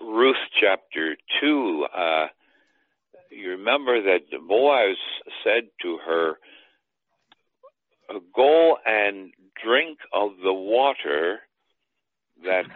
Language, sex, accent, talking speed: English, male, American, 85 wpm